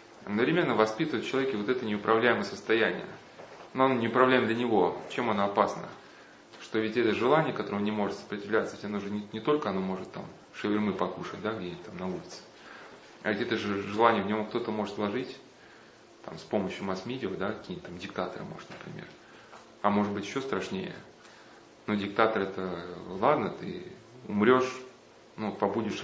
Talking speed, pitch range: 170 wpm, 100-120 Hz